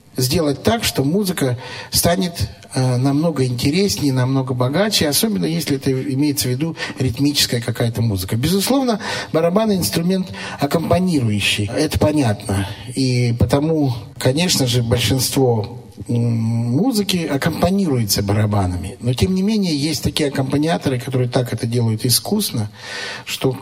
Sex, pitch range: male, 110-150 Hz